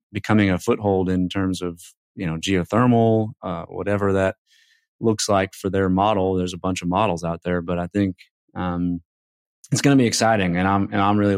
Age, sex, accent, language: 30-49, male, American, English